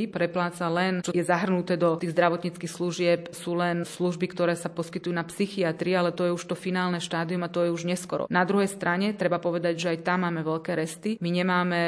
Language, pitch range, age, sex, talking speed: Slovak, 170-185 Hz, 30-49, female, 210 wpm